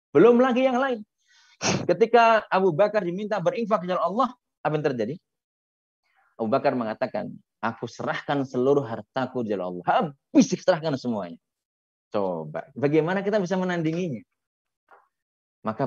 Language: Indonesian